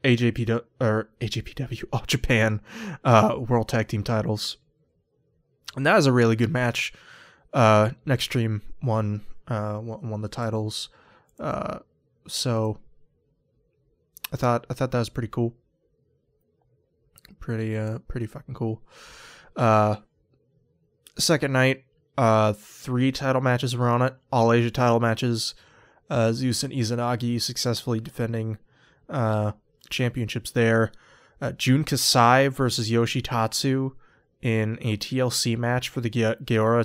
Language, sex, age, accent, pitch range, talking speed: English, male, 20-39, American, 110-125 Hz, 120 wpm